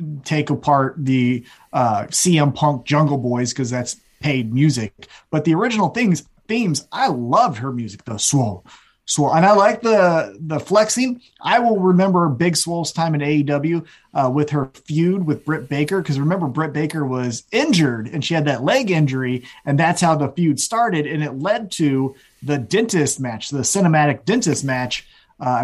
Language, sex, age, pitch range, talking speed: English, male, 30-49, 135-175 Hz, 175 wpm